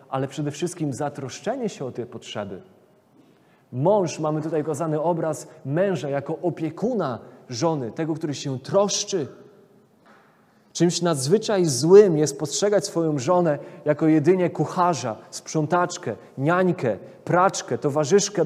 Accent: native